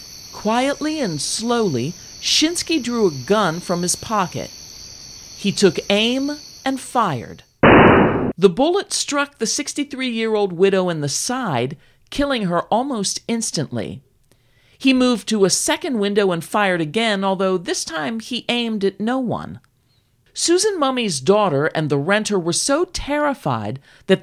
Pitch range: 165-255 Hz